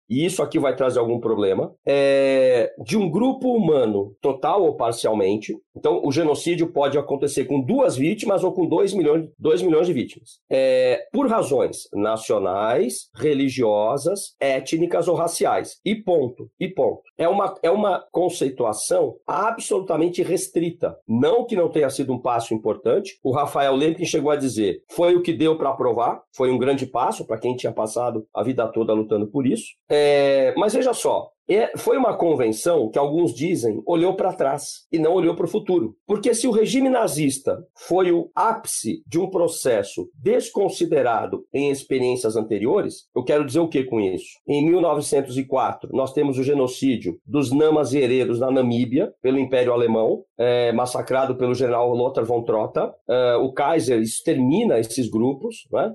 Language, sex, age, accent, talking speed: Portuguese, male, 50-69, Brazilian, 160 wpm